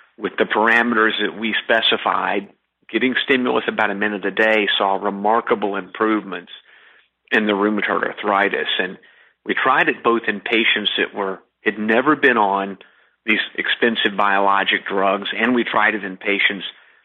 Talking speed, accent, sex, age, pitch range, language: 150 wpm, American, male, 50-69, 100-110 Hz, English